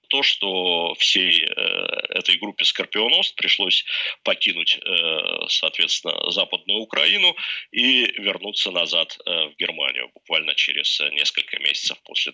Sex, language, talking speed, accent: male, Russian, 120 wpm, native